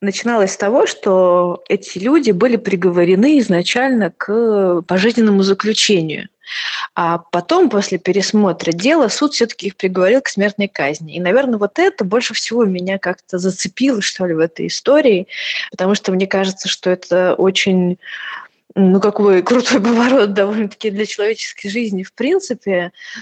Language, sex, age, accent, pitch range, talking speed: Russian, female, 20-39, native, 175-215 Hz, 140 wpm